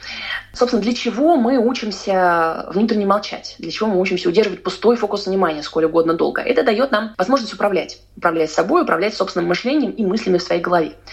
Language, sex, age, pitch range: Russian, female, 20-39, 175-240 Hz